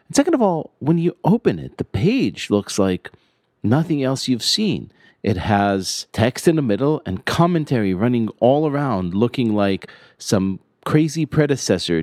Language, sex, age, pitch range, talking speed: English, male, 40-59, 95-145 Hz, 155 wpm